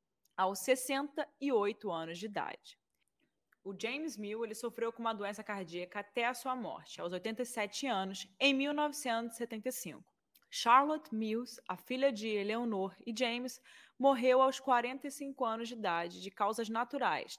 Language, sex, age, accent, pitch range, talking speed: Portuguese, female, 20-39, Brazilian, 200-255 Hz, 140 wpm